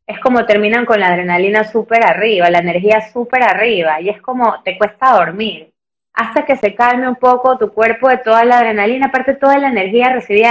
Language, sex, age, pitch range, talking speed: Spanish, female, 20-39, 215-310 Hz, 200 wpm